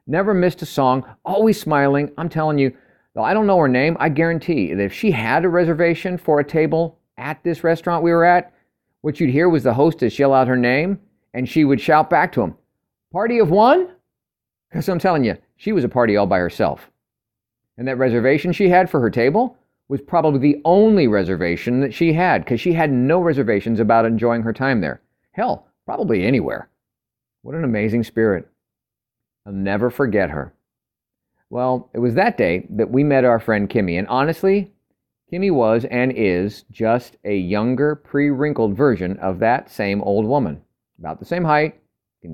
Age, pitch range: 50-69, 115-165 Hz